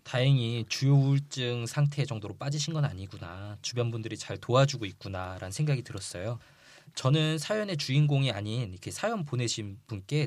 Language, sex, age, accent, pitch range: Korean, male, 20-39, native, 110-150 Hz